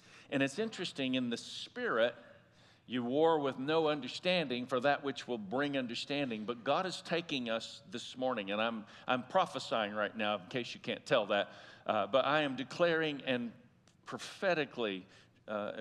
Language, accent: English, American